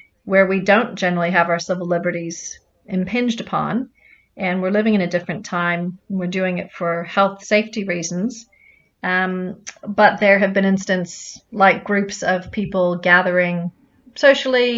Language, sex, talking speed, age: English, female, 150 wpm, 30-49